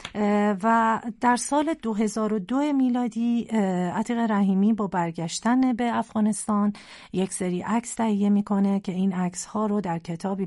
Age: 40-59